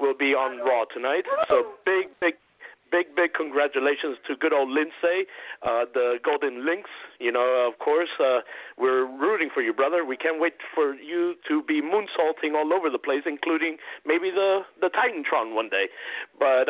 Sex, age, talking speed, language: male, 50-69, 175 wpm, English